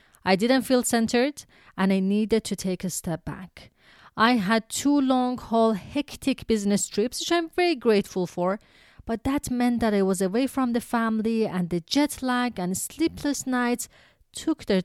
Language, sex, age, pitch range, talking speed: English, female, 30-49, 185-245 Hz, 175 wpm